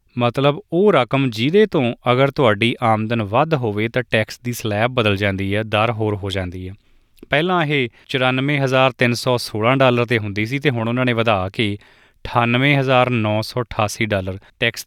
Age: 20-39